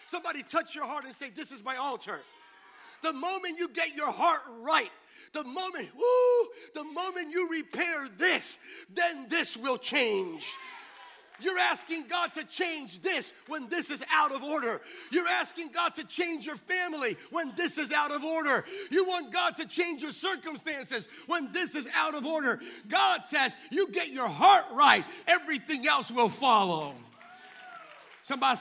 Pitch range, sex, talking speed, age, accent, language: 200-325 Hz, male, 165 wpm, 50-69, American, English